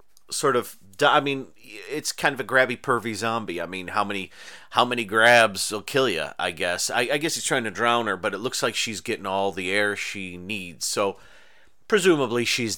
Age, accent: 40-59, American